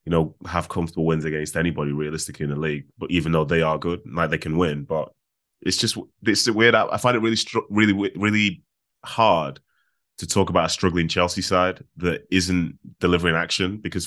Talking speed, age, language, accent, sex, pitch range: 195 wpm, 20-39, English, British, male, 80-95 Hz